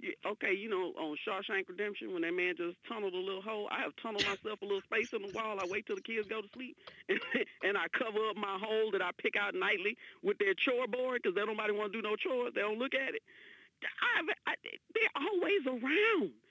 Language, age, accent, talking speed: English, 40-59, American, 235 wpm